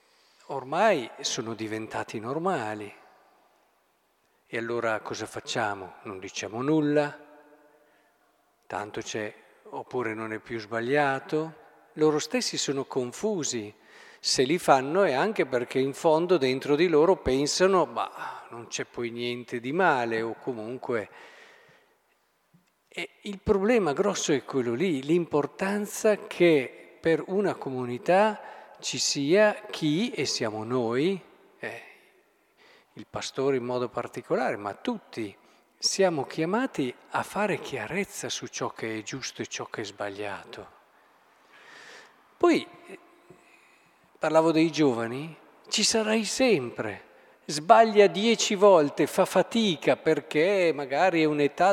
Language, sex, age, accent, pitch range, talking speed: Italian, male, 50-69, native, 130-215 Hz, 115 wpm